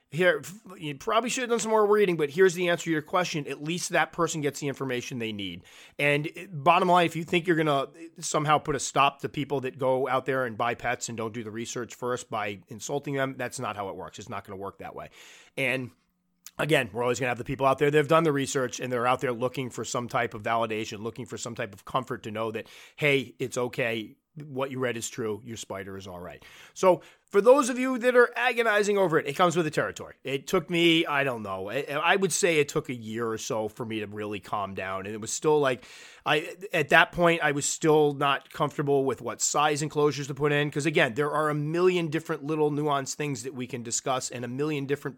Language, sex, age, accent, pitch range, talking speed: English, male, 30-49, American, 125-160 Hz, 255 wpm